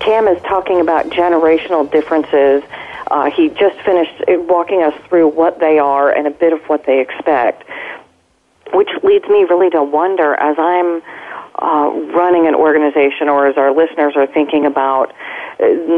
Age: 40-59